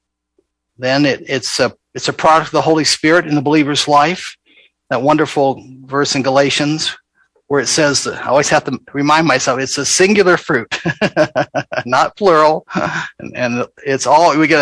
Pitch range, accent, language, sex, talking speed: 130-165 Hz, American, English, male, 170 wpm